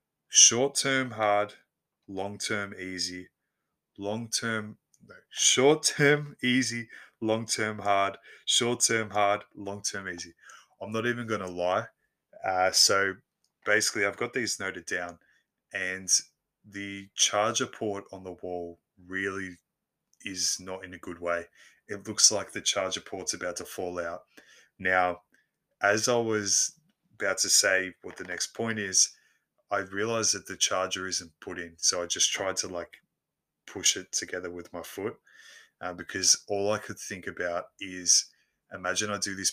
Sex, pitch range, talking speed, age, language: male, 90-110 Hz, 155 wpm, 20-39, English